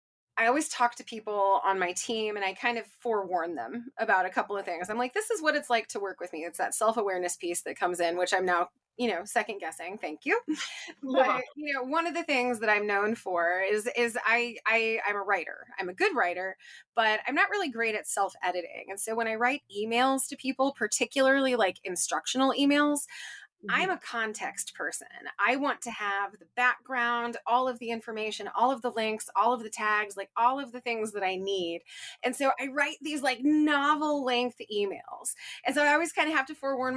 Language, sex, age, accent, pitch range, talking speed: English, female, 20-39, American, 215-275 Hz, 220 wpm